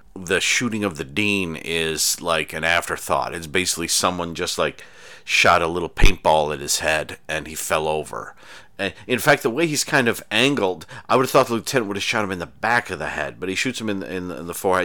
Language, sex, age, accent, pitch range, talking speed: English, male, 40-59, American, 85-115 Hz, 235 wpm